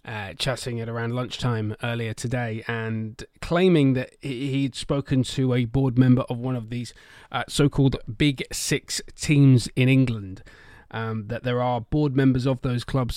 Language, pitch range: English, 115-135 Hz